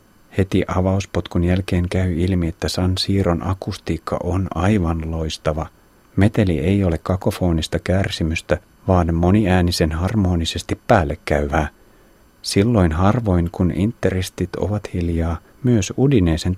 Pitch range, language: 85-100 Hz, Finnish